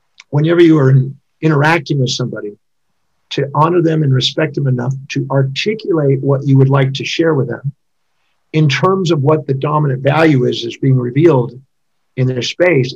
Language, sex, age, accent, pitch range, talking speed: English, male, 50-69, American, 130-155 Hz, 170 wpm